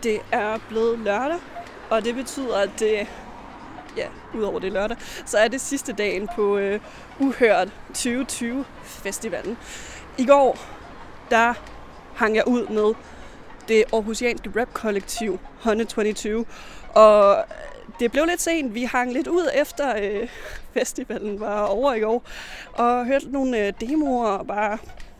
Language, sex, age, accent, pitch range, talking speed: Danish, female, 20-39, native, 215-255 Hz, 140 wpm